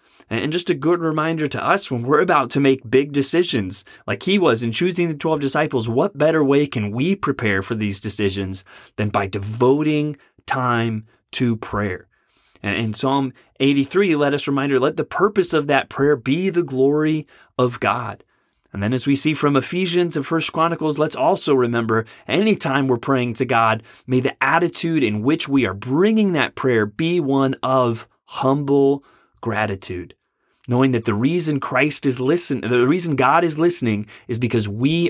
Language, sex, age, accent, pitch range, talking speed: English, male, 30-49, American, 115-150 Hz, 175 wpm